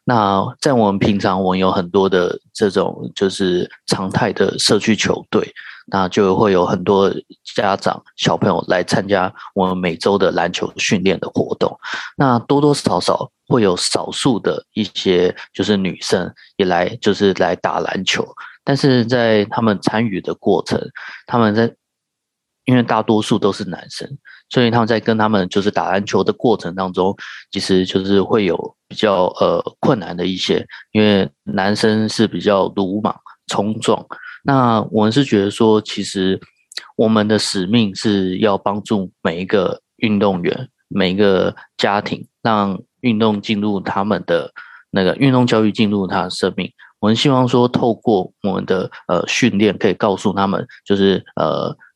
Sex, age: male, 20-39